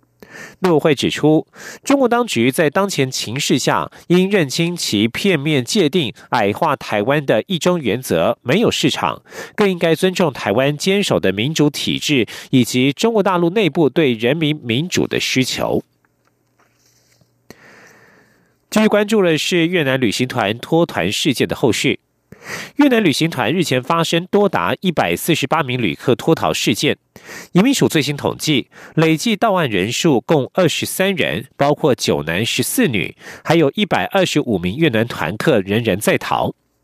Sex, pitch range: male, 125-185 Hz